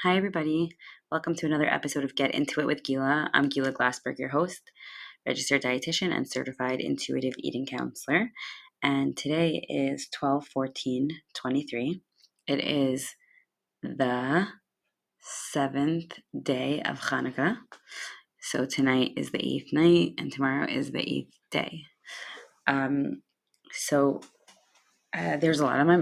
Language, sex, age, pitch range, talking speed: English, female, 20-39, 135-150 Hz, 130 wpm